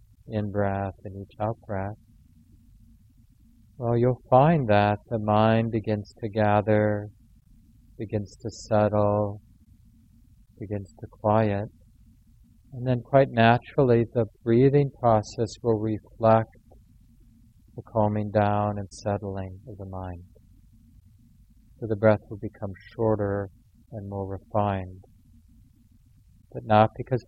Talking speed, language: 110 wpm, English